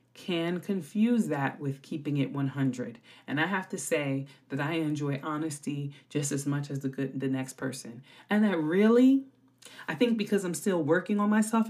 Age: 30-49